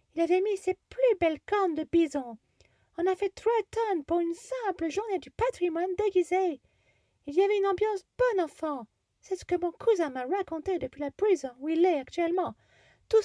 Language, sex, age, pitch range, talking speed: French, female, 40-59, 310-400 Hz, 195 wpm